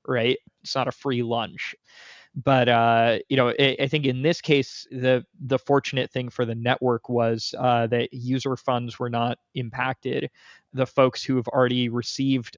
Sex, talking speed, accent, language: male, 175 wpm, American, English